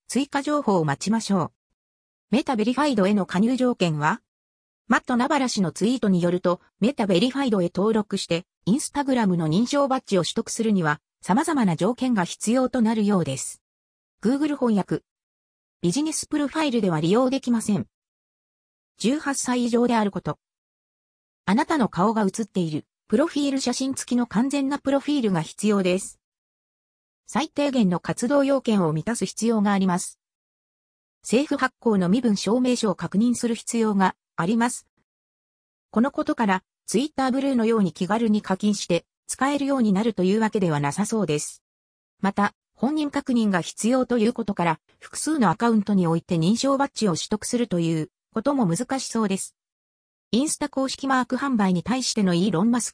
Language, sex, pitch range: Japanese, female, 185-255 Hz